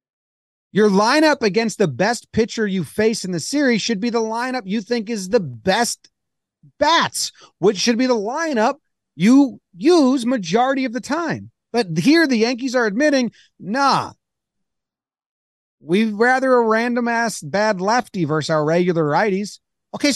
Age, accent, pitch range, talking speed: 30-49, American, 175-255 Hz, 150 wpm